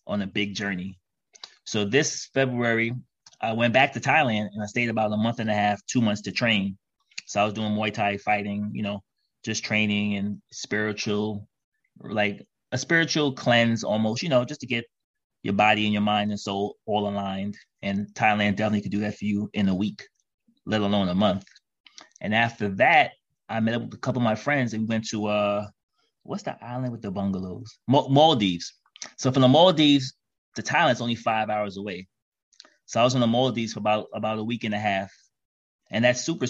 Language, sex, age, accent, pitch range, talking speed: English, male, 30-49, American, 105-125 Hz, 205 wpm